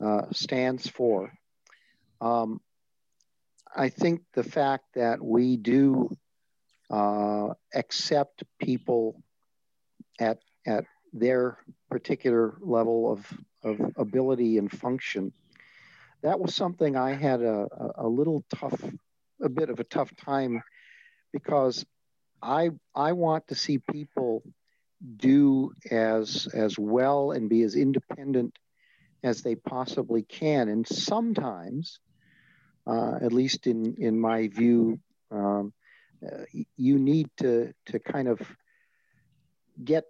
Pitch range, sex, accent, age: 115-150 Hz, male, American, 50-69